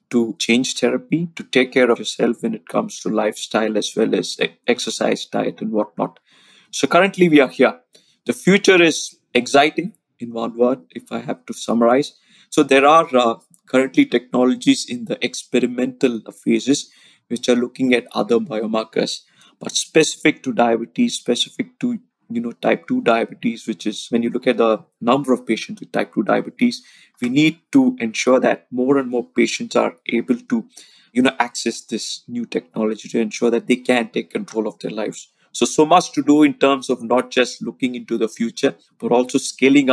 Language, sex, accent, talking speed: English, male, Indian, 185 wpm